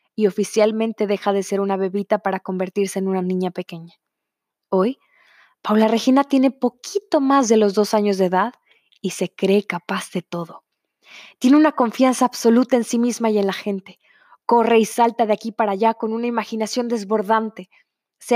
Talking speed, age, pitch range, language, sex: 175 wpm, 20-39, 205-245 Hz, Spanish, female